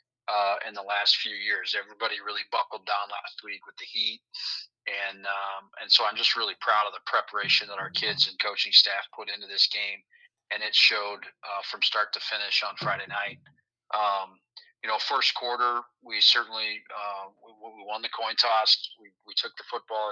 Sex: male